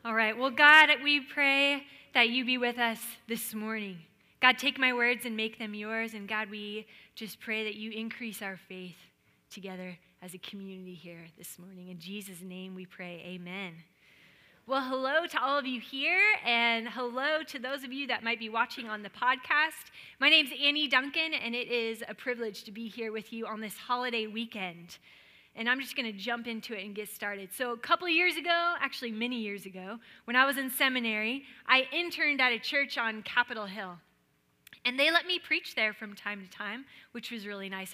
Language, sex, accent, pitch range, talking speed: English, female, American, 205-270 Hz, 205 wpm